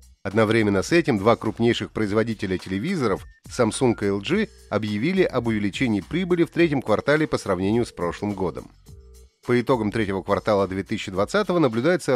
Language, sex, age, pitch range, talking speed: Russian, male, 30-49, 105-155 Hz, 140 wpm